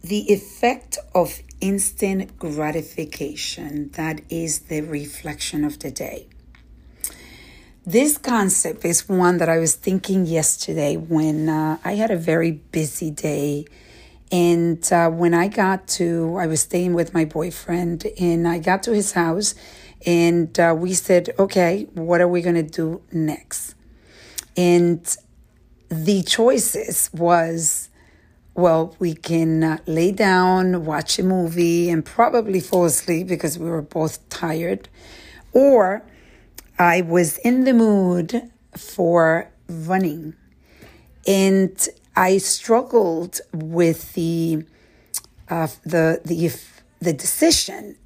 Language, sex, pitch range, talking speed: English, female, 160-185 Hz, 125 wpm